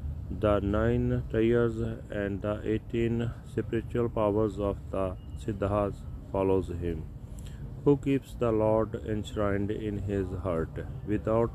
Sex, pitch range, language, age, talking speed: male, 95-110 Hz, Punjabi, 40-59, 115 wpm